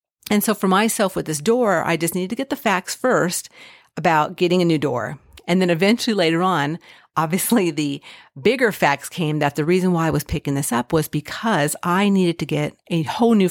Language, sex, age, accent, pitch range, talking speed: English, female, 50-69, American, 160-220 Hz, 215 wpm